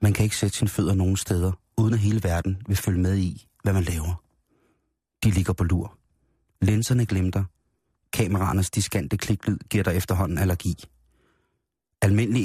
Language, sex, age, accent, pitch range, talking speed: Danish, male, 30-49, native, 95-110 Hz, 165 wpm